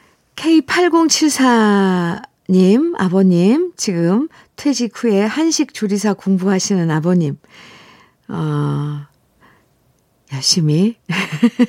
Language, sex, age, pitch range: Korean, female, 50-69, 180-255 Hz